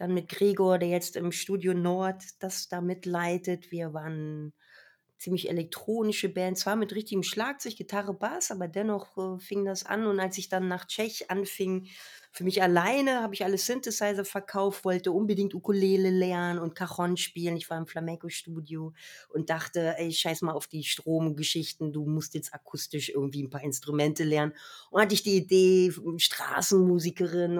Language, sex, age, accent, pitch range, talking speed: German, female, 30-49, German, 170-195 Hz, 165 wpm